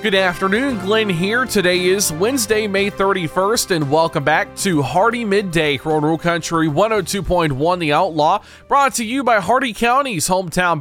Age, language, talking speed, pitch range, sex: 20-39, English, 150 wpm, 155-210 Hz, male